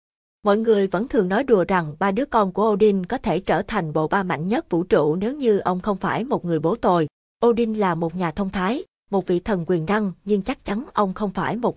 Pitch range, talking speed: 180-220 Hz, 250 wpm